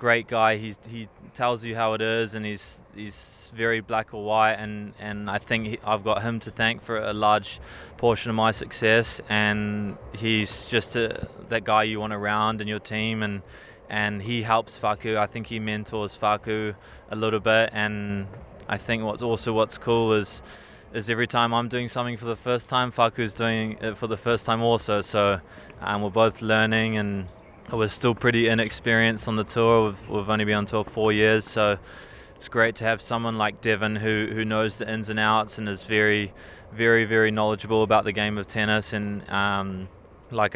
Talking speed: 200 wpm